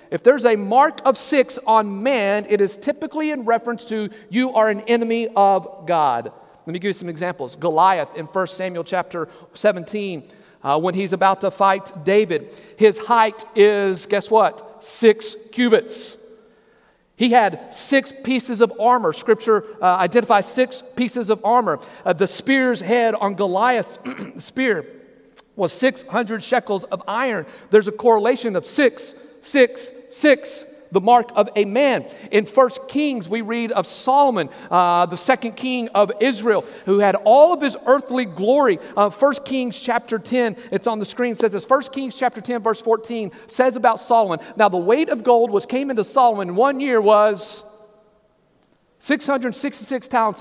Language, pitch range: English, 205-255 Hz